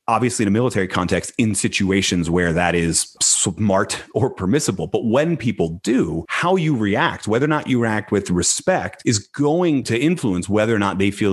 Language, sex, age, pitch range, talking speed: English, male, 30-49, 90-120 Hz, 190 wpm